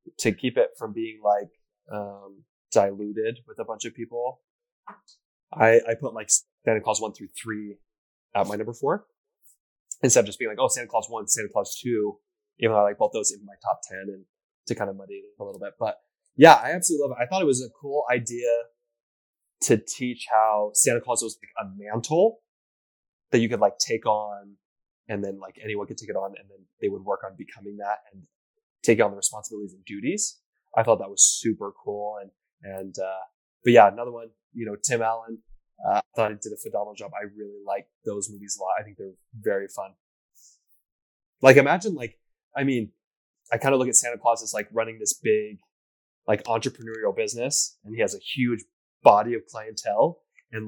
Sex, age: male, 20-39